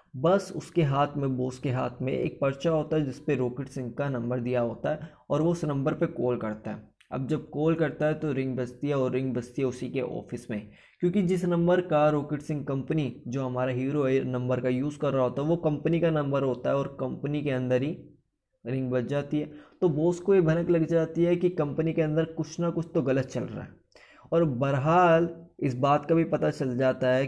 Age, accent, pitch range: 20-39, native, 130-160 Hz